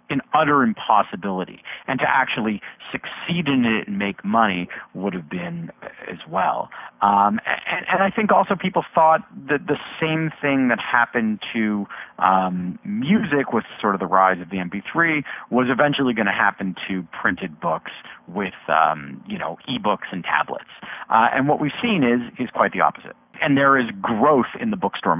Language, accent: English, American